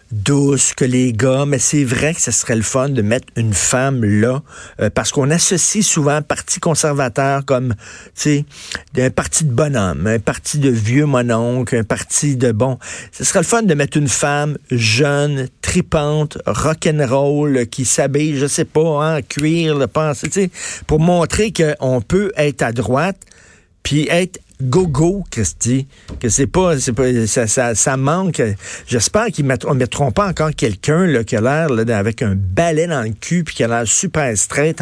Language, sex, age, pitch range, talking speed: French, male, 50-69, 120-155 Hz, 175 wpm